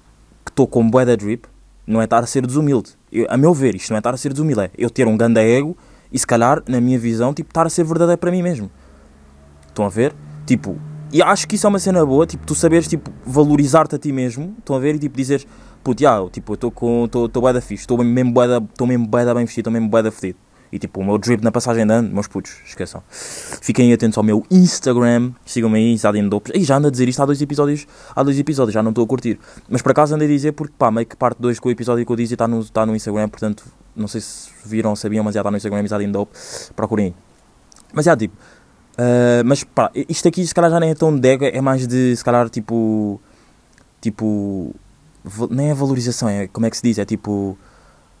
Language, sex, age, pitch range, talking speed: Portuguese, male, 20-39, 110-140 Hz, 240 wpm